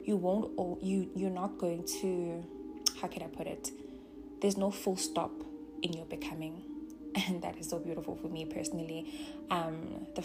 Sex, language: female, English